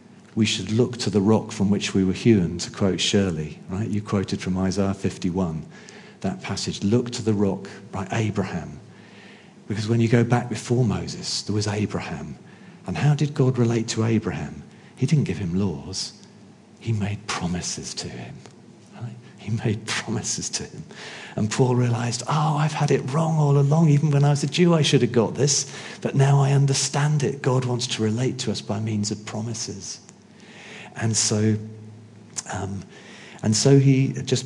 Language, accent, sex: English, British, male